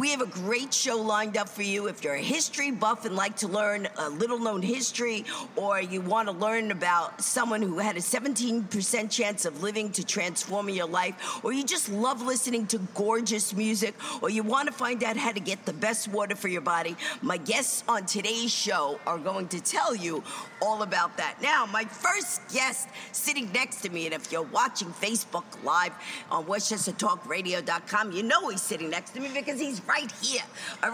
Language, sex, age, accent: English, female, 50-69, American